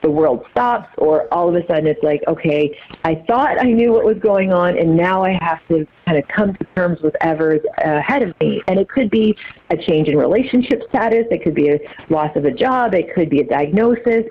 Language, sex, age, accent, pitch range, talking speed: English, female, 30-49, American, 165-220 Hz, 240 wpm